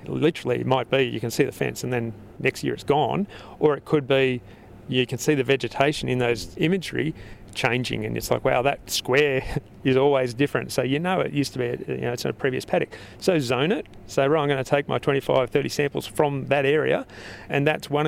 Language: English